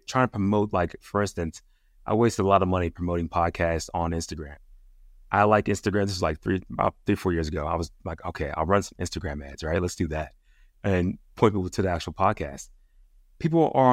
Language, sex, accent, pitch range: English, male, American, 85-105 Hz